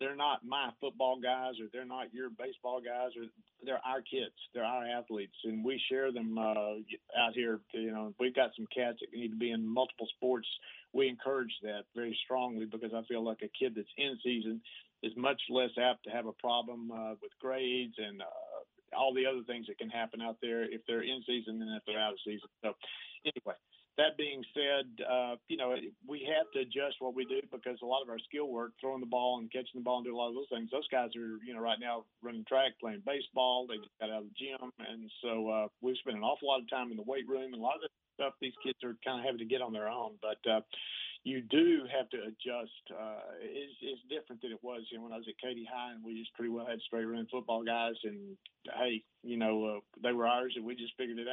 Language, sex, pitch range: English, male, 115-130 Hz